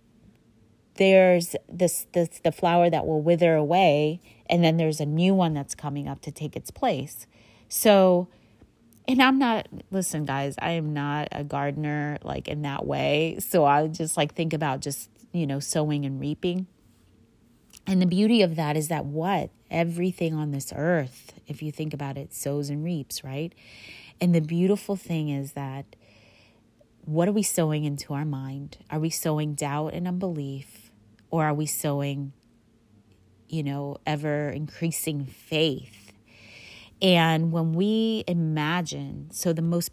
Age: 30-49